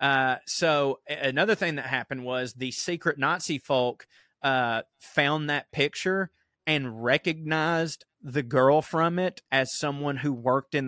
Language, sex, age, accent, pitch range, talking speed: English, male, 30-49, American, 135-165 Hz, 145 wpm